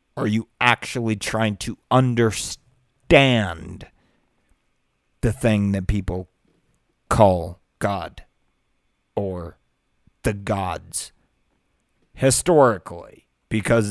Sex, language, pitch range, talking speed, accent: male, English, 95-130 Hz, 75 wpm, American